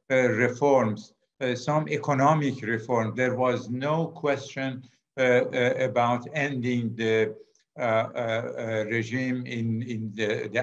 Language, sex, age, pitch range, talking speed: English, male, 60-79, 115-140 Hz, 130 wpm